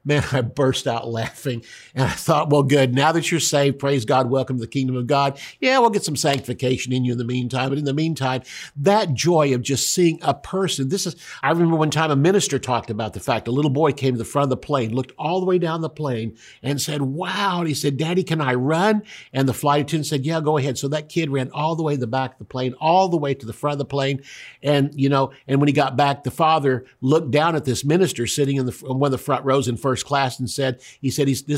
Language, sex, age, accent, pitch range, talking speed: English, male, 50-69, American, 130-150 Hz, 275 wpm